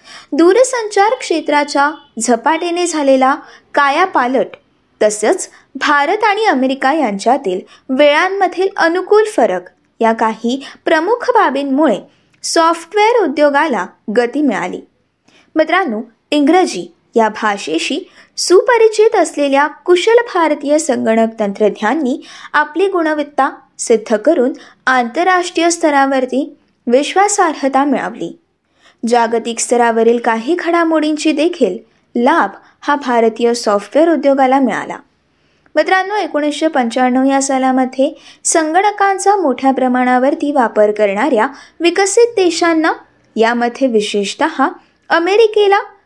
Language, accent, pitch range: Marathi, native, 250-350 Hz